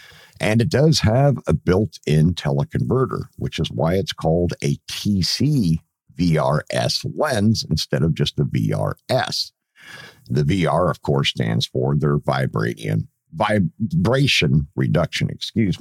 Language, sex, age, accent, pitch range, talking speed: English, male, 50-69, American, 95-130 Hz, 120 wpm